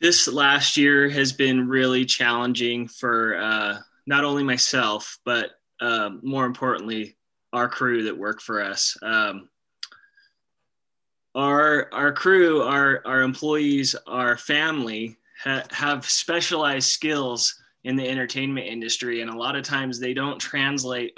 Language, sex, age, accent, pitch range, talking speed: English, male, 20-39, American, 120-140 Hz, 135 wpm